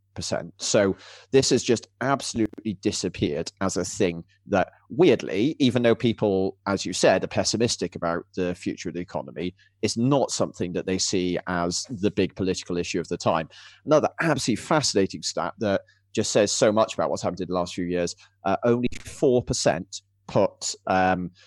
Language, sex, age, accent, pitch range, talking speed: English, male, 30-49, British, 90-110 Hz, 170 wpm